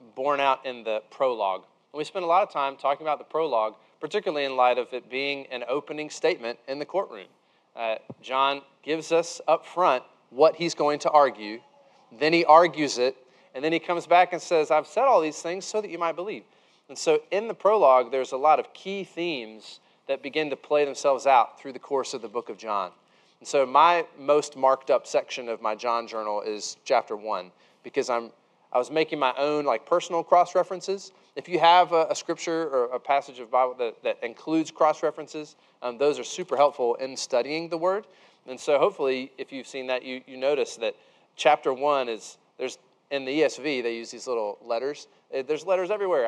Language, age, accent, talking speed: English, 30-49, American, 205 wpm